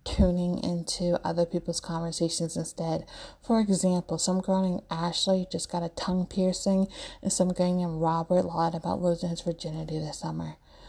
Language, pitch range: English, 170-205 Hz